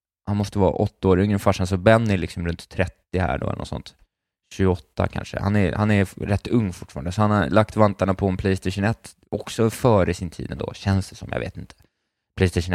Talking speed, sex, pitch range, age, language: 210 wpm, male, 90-105 Hz, 20-39, Swedish